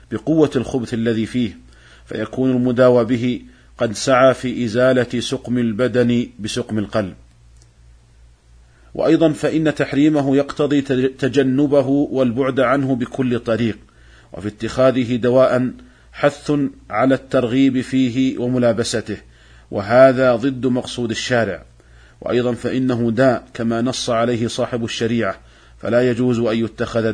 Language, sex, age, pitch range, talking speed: Arabic, male, 40-59, 115-130 Hz, 105 wpm